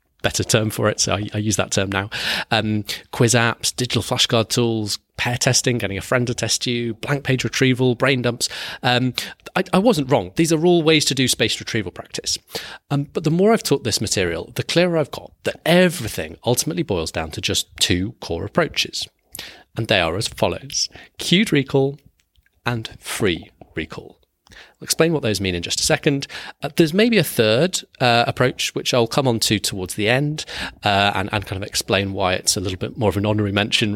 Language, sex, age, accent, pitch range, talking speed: English, male, 30-49, British, 100-145 Hz, 205 wpm